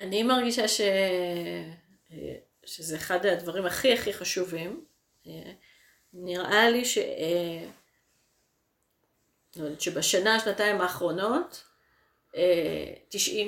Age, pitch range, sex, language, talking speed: 30-49, 175-220 Hz, female, Hebrew, 70 wpm